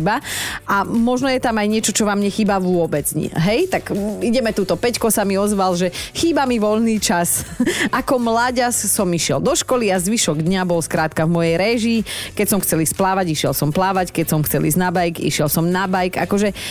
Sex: female